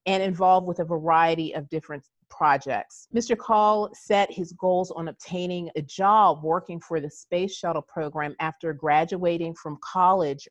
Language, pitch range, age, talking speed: English, 160-210 Hz, 30-49, 155 wpm